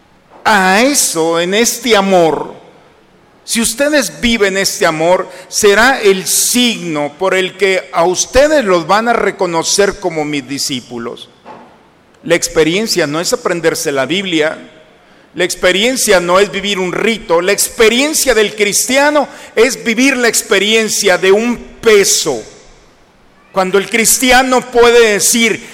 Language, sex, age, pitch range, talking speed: Spanish, male, 50-69, 180-230 Hz, 130 wpm